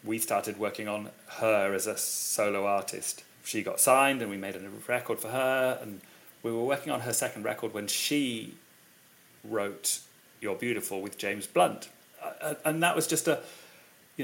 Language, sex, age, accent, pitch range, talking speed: English, male, 40-59, British, 105-125 Hz, 175 wpm